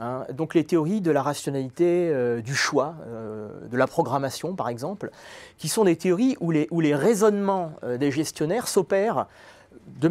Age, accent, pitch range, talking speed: 30-49, French, 145-190 Hz, 170 wpm